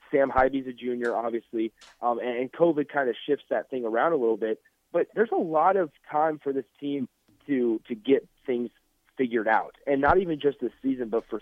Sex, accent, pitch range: male, American, 115-150 Hz